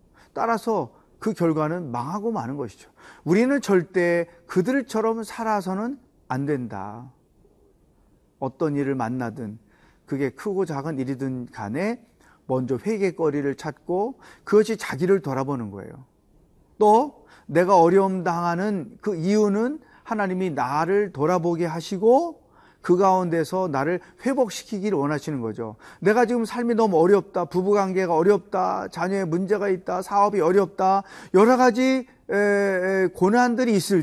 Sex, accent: male, native